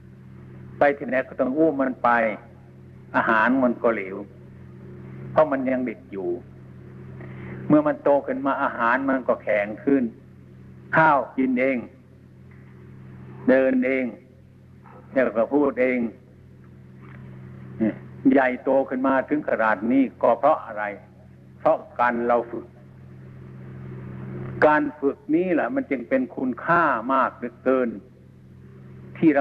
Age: 60-79